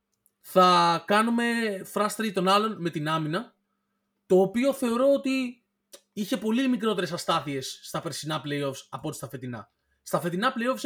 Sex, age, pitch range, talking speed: male, 20-39, 155-215 Hz, 145 wpm